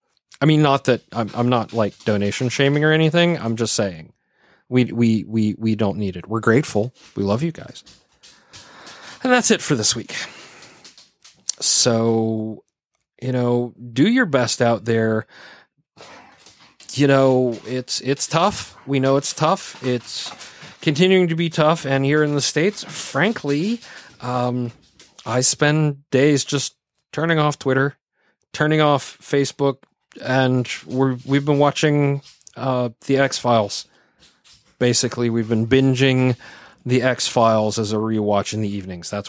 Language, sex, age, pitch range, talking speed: English, male, 30-49, 115-150 Hz, 145 wpm